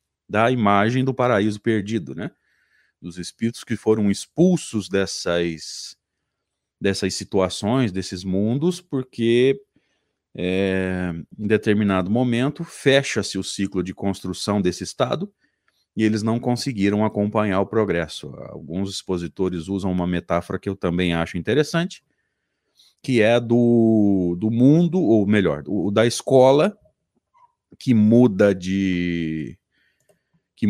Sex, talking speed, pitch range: male, 115 wpm, 95-120 Hz